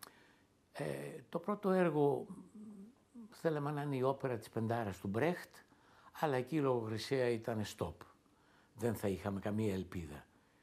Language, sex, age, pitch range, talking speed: Greek, male, 60-79, 105-170 Hz, 135 wpm